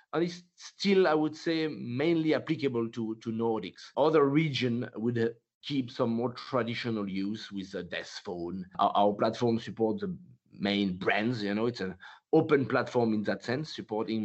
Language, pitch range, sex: English, 110-155 Hz, male